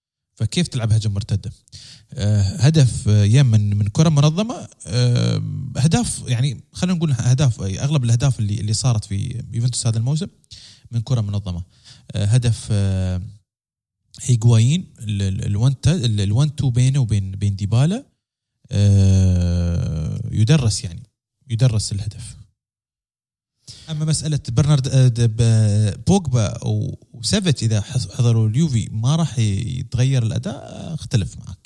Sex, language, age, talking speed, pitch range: male, Arabic, 20-39, 115 wpm, 105-130 Hz